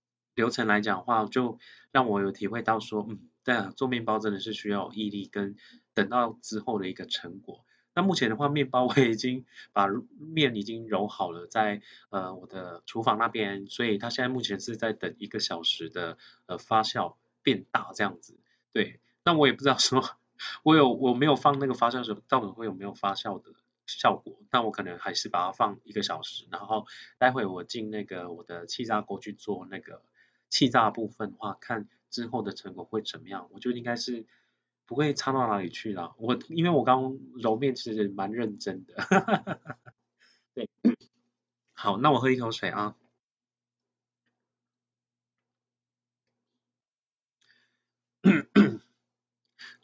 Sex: male